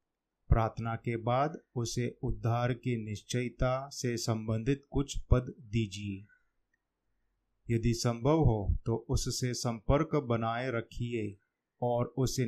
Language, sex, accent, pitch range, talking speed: Hindi, male, native, 110-125 Hz, 105 wpm